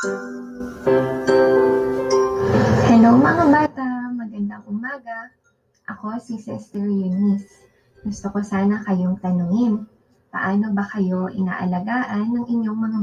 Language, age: Filipino, 20-39